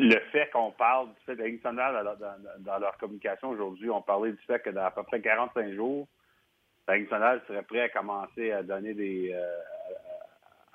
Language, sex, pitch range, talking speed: French, male, 95-110 Hz, 180 wpm